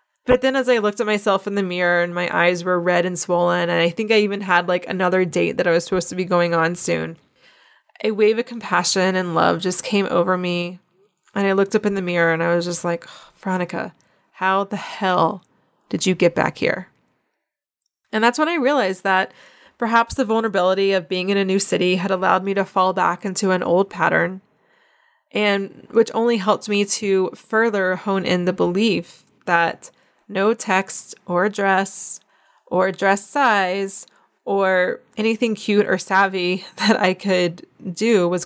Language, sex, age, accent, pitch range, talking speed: English, female, 20-39, American, 180-215 Hz, 185 wpm